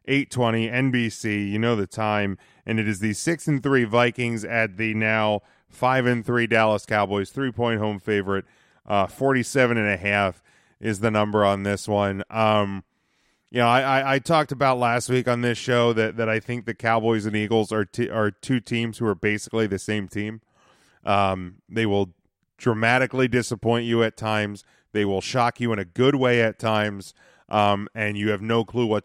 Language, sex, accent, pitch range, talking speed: English, male, American, 105-125 Hz, 195 wpm